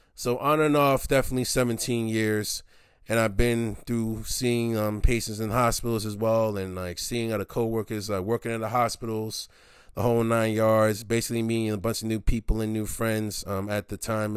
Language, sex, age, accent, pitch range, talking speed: English, male, 20-39, American, 100-125 Hz, 190 wpm